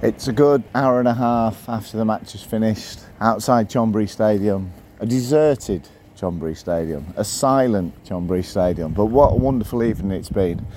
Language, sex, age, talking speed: English, male, 40-59, 165 wpm